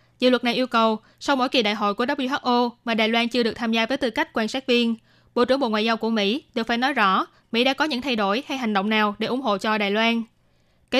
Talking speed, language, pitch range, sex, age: 290 wpm, Vietnamese, 220-255 Hz, female, 20-39